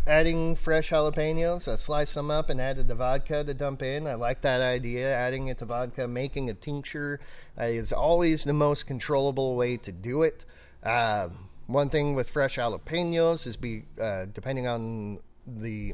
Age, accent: 30-49, American